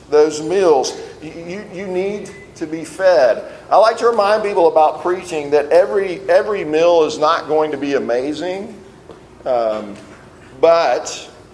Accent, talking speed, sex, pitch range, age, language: American, 145 wpm, male, 145-175 Hz, 40-59, English